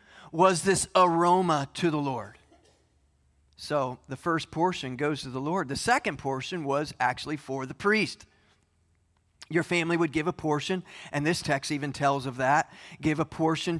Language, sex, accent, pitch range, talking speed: English, male, American, 120-190 Hz, 165 wpm